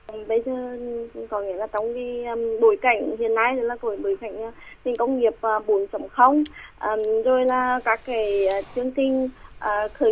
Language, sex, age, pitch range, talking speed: Vietnamese, female, 20-39, 225-275 Hz, 180 wpm